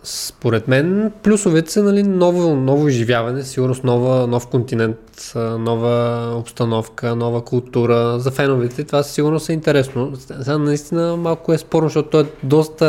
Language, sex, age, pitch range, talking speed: Bulgarian, male, 20-39, 125-155 Hz, 140 wpm